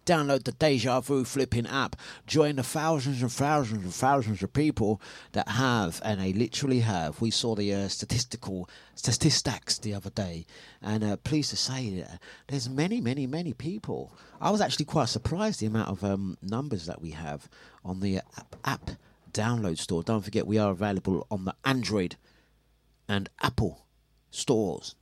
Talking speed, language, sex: 170 wpm, English, male